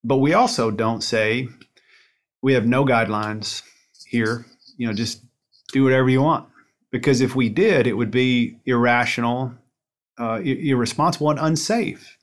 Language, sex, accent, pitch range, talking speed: English, male, American, 115-135 Hz, 140 wpm